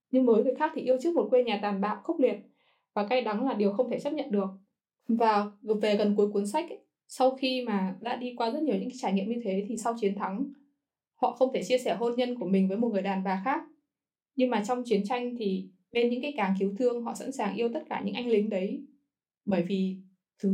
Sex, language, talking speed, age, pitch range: female, Vietnamese, 255 wpm, 10-29, 200-255 Hz